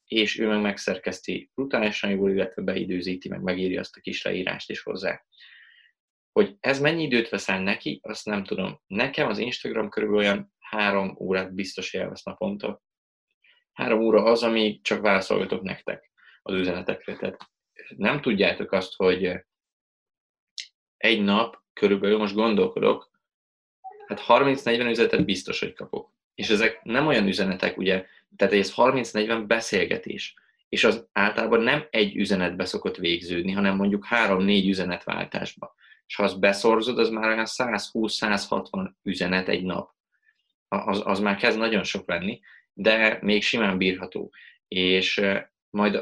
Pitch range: 95-110 Hz